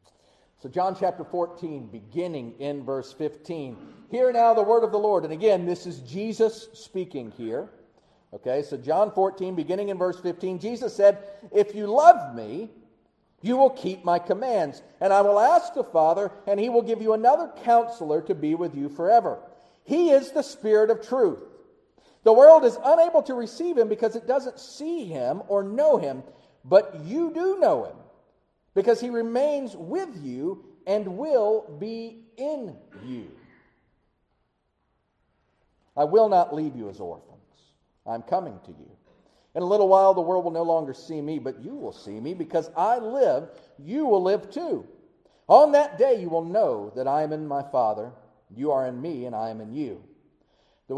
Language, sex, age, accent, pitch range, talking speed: English, male, 50-69, American, 150-235 Hz, 180 wpm